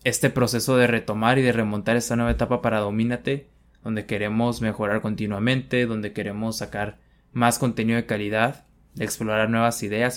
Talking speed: 160 wpm